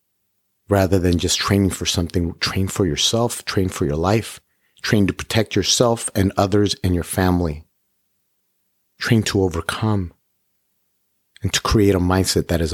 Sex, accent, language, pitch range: male, American, English, 90-105 Hz